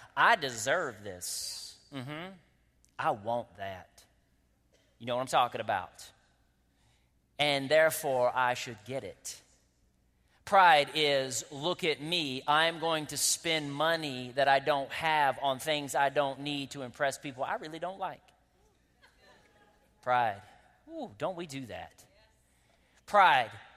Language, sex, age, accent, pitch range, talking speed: English, male, 30-49, American, 140-200 Hz, 135 wpm